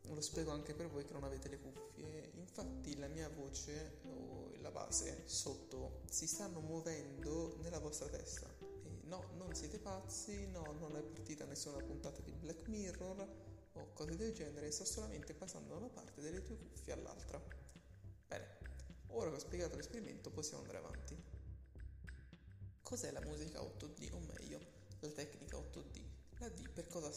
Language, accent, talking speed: Italian, native, 160 wpm